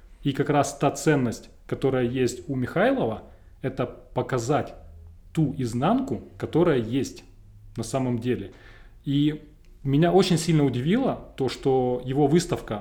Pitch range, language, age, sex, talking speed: 120-145 Hz, Russian, 20-39, male, 125 wpm